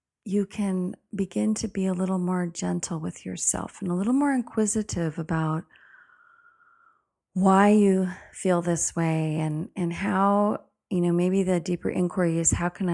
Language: English